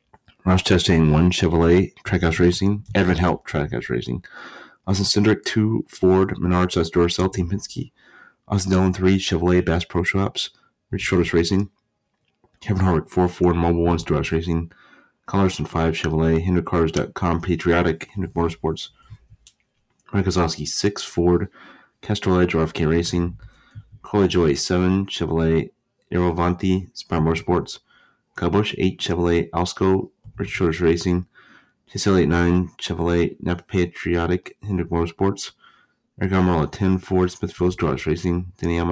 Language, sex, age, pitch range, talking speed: English, male, 30-49, 85-95 Hz, 120 wpm